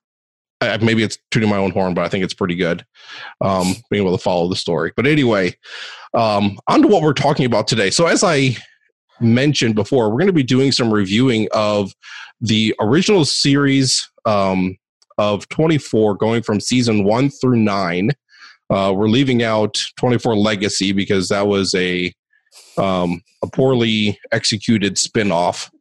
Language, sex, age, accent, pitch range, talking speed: English, male, 30-49, American, 100-125 Hz, 165 wpm